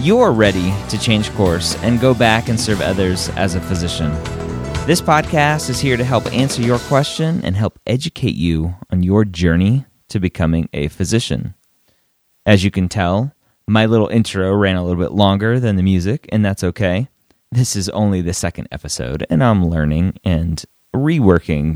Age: 30-49